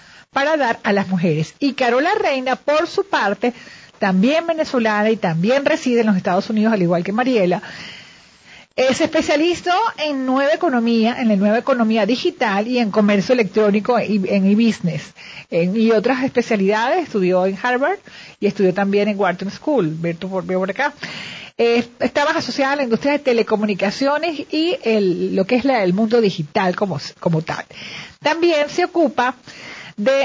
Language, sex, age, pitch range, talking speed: Spanish, female, 40-59, 200-275 Hz, 160 wpm